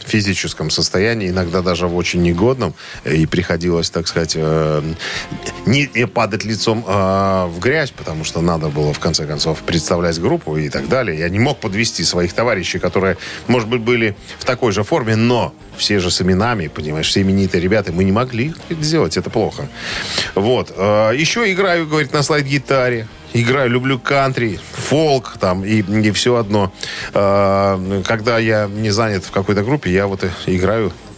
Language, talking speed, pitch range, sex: Russian, 165 wpm, 85-115 Hz, male